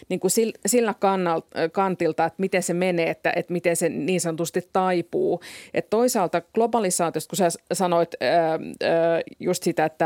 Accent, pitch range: native, 165-200 Hz